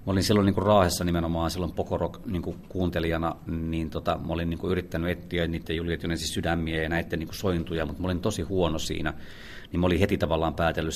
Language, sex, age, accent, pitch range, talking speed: Finnish, male, 30-49, native, 80-95 Hz, 195 wpm